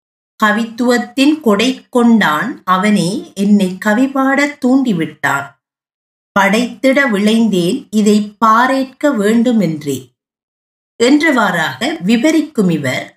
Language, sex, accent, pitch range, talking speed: Tamil, female, native, 205-280 Hz, 70 wpm